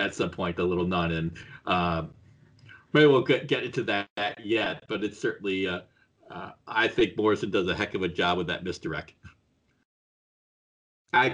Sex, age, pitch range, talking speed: male, 40-59, 85-110 Hz, 180 wpm